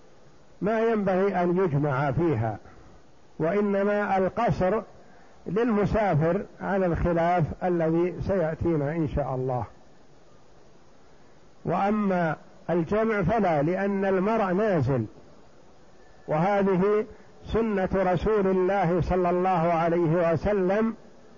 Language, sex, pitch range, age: Arabic, male, 170-205 Hz, 60-79